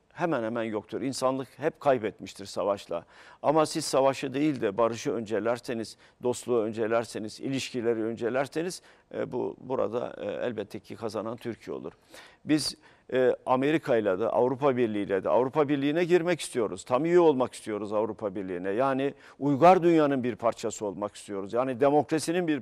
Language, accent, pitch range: Turkish, native, 110-150 Hz